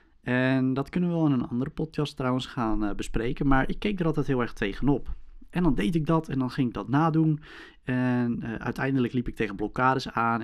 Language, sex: Dutch, male